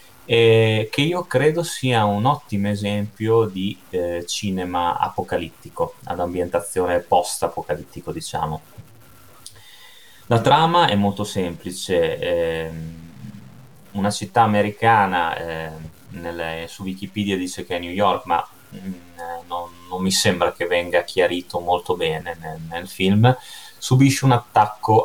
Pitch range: 85-110 Hz